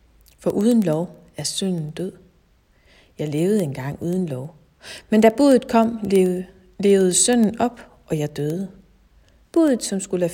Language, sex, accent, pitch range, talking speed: Danish, female, native, 165-230 Hz, 145 wpm